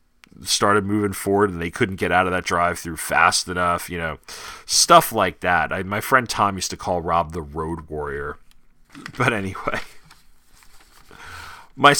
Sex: male